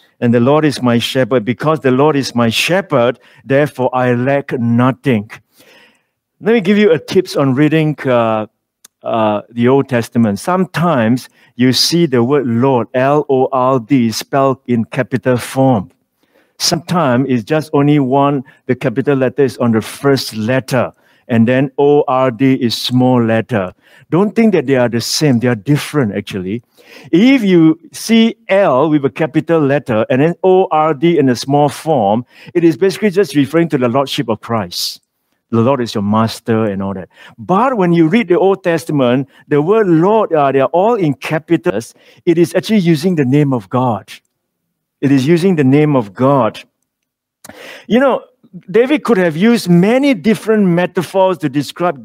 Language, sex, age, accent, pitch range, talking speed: English, male, 60-79, Malaysian, 130-175 Hz, 165 wpm